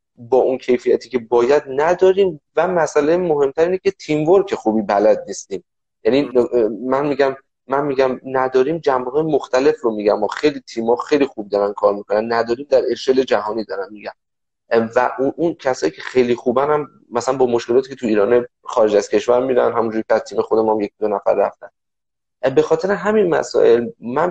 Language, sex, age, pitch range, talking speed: Persian, male, 30-49, 120-175 Hz, 175 wpm